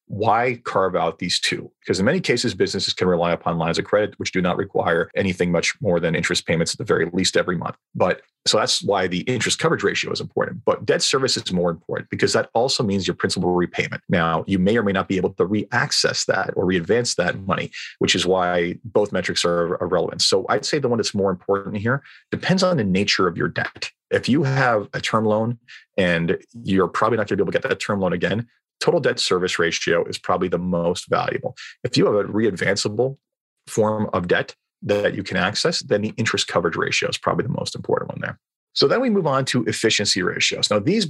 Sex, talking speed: male, 230 wpm